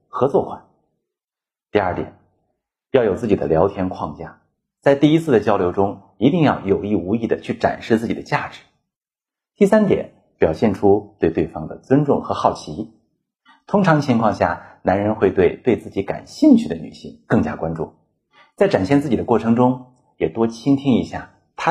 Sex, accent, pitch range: male, native, 100-160 Hz